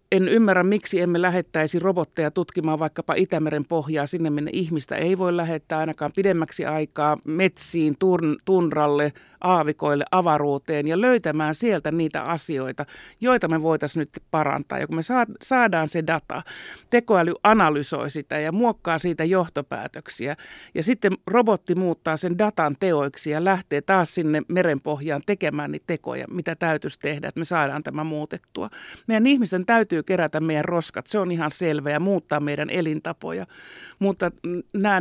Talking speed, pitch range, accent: 150 wpm, 155-185 Hz, native